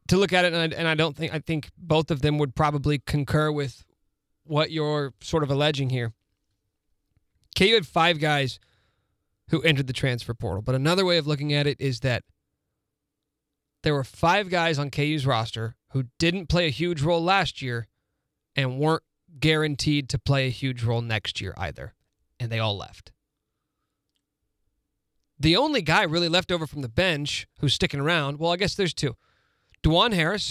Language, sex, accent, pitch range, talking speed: English, male, American, 130-160 Hz, 175 wpm